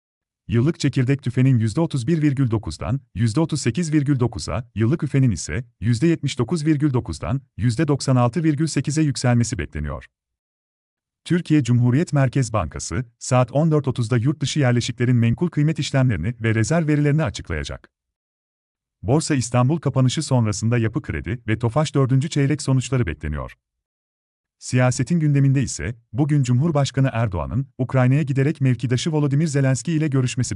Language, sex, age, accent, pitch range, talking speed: Turkish, male, 40-59, native, 110-145 Hz, 105 wpm